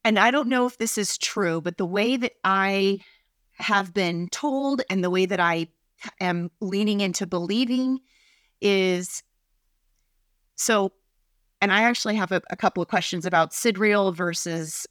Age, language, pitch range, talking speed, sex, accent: 30-49, English, 185-230 Hz, 155 wpm, female, American